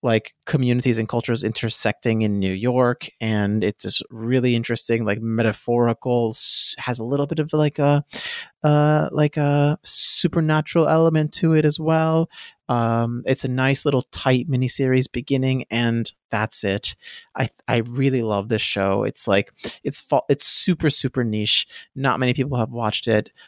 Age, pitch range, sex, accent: 30-49, 105-130 Hz, male, American